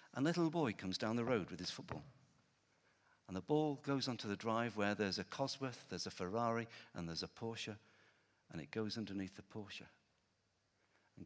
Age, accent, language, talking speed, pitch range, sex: 50-69, British, English, 185 wpm, 110-155 Hz, male